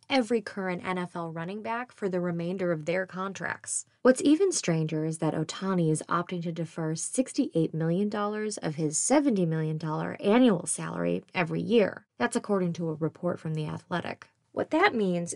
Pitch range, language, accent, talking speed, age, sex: 165-225 Hz, English, American, 165 wpm, 20-39, female